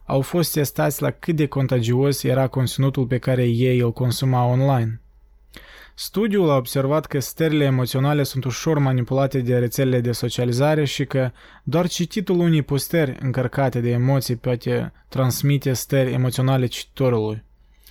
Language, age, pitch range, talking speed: Romanian, 20-39, 125-145 Hz, 140 wpm